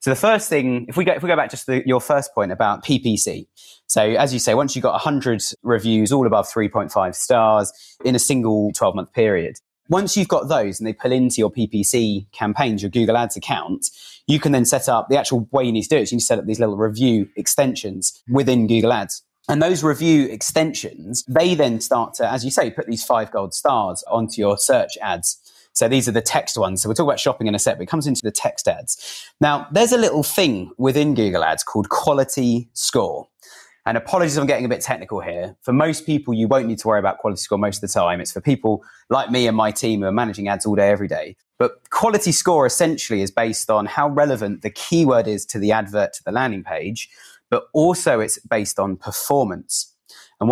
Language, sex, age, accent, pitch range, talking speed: English, male, 30-49, British, 110-145 Hz, 235 wpm